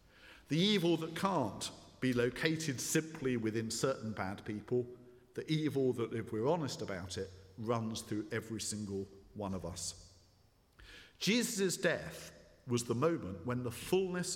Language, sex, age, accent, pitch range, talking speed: English, male, 50-69, British, 95-130 Hz, 140 wpm